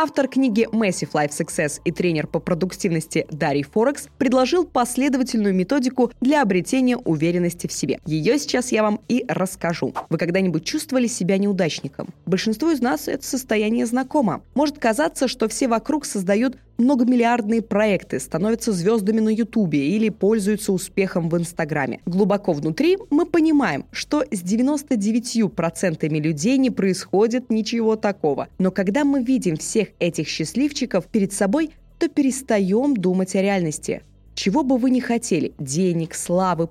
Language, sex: Russian, female